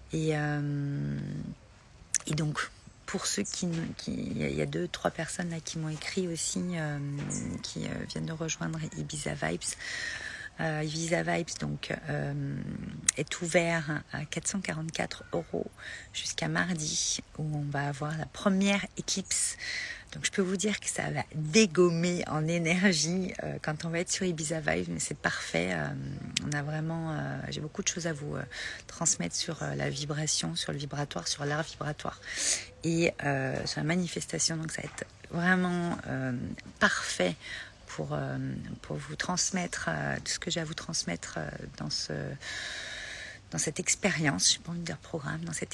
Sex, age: female, 40-59